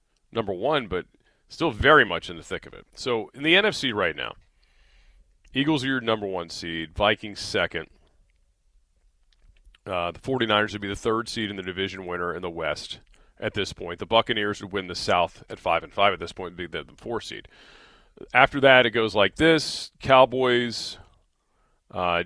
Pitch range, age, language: 85-115 Hz, 40-59, English